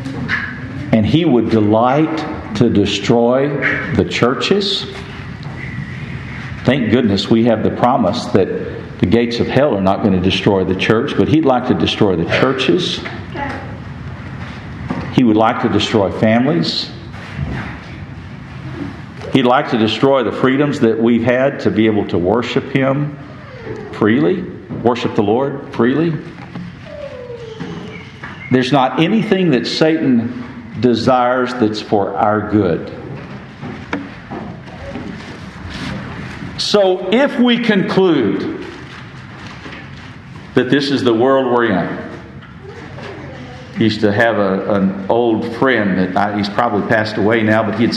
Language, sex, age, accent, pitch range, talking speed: English, male, 50-69, American, 110-140 Hz, 120 wpm